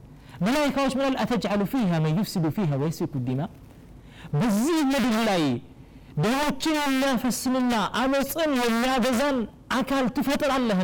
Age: 40-59